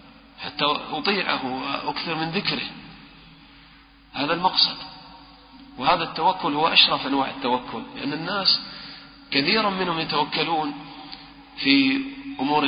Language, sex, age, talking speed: English, male, 40-59, 95 wpm